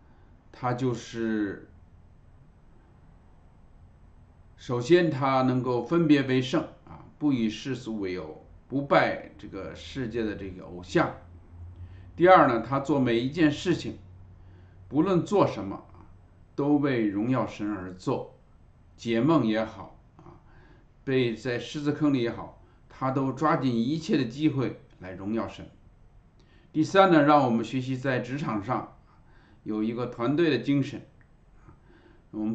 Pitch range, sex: 95-145 Hz, male